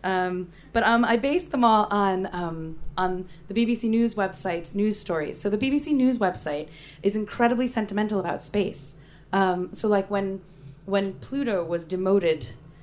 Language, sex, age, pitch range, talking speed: English, female, 20-39, 160-195 Hz, 160 wpm